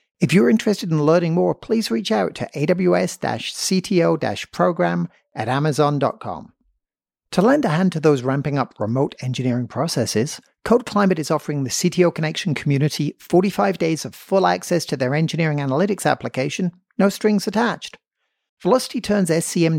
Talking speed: 145 wpm